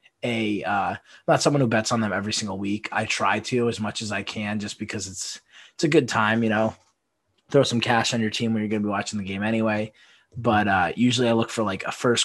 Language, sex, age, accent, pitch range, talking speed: English, male, 20-39, American, 105-120 Hz, 255 wpm